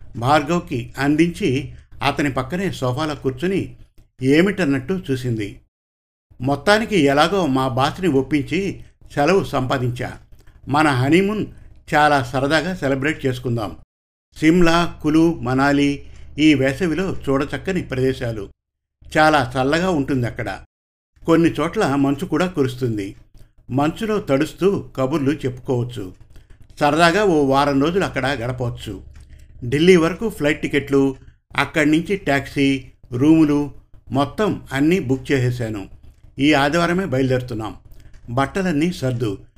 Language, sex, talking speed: Telugu, male, 95 wpm